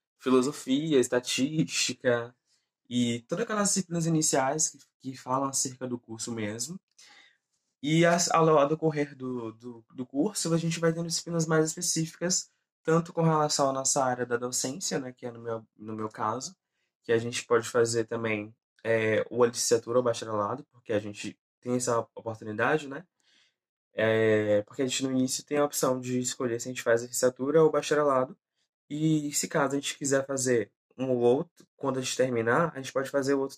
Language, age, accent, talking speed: Portuguese, 20-39, Brazilian, 185 wpm